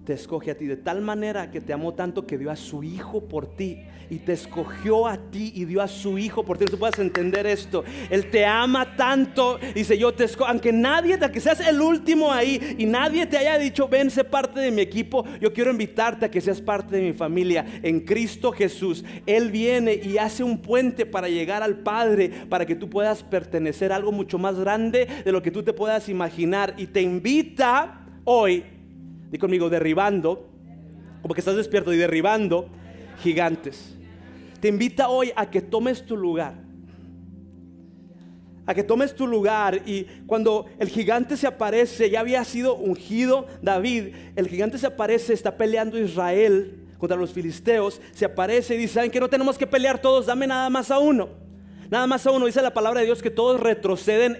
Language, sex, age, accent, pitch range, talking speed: English, male, 40-59, Mexican, 180-240 Hz, 195 wpm